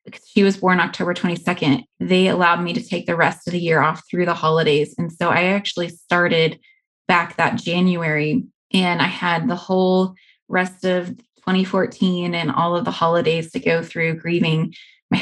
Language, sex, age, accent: English, female, 20-39, American